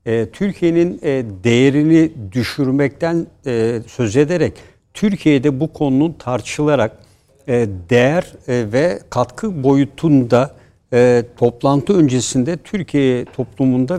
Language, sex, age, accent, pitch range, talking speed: Turkish, male, 60-79, native, 120-155 Hz, 75 wpm